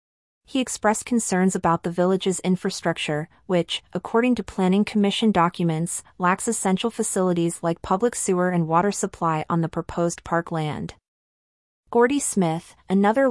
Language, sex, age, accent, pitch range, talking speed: English, female, 30-49, American, 170-205 Hz, 135 wpm